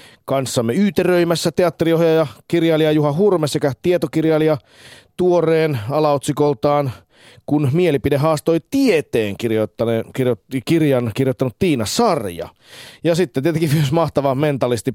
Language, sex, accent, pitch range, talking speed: Finnish, male, native, 115-165 Hz, 100 wpm